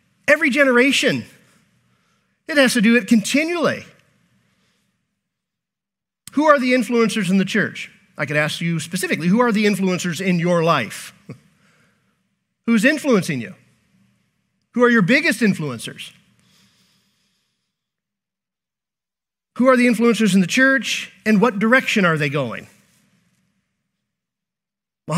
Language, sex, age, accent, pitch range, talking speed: English, male, 50-69, American, 155-215 Hz, 115 wpm